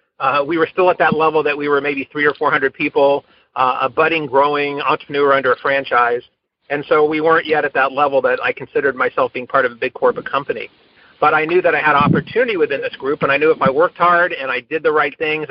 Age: 40-59